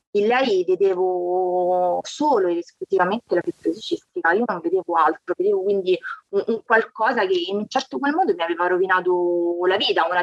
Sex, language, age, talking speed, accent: female, Italian, 20-39, 165 wpm, native